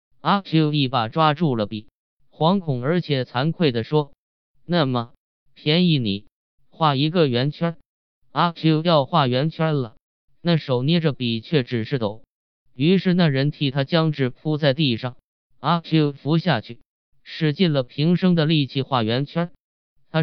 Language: Chinese